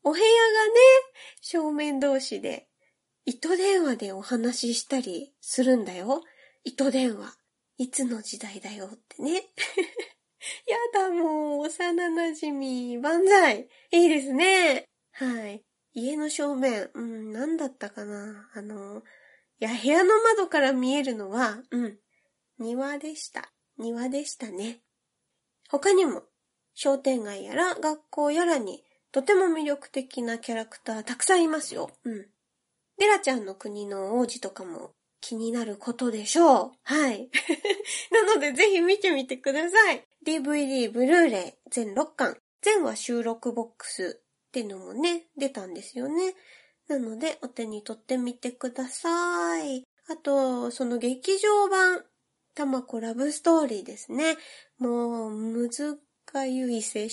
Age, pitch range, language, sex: 20-39, 235-325 Hz, Japanese, female